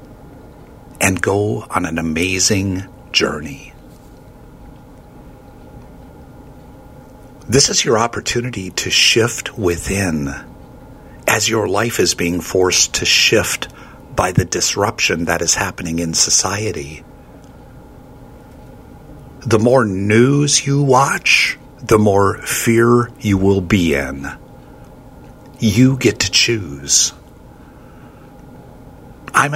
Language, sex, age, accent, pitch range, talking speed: English, male, 50-69, American, 85-120 Hz, 95 wpm